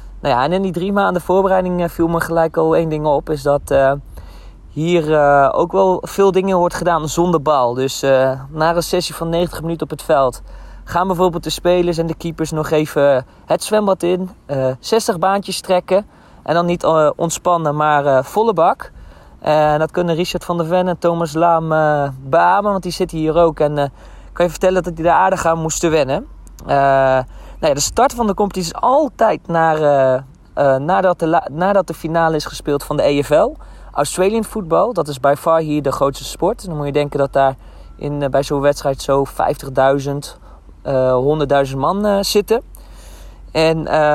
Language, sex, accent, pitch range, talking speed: Dutch, male, Dutch, 140-175 Hz, 190 wpm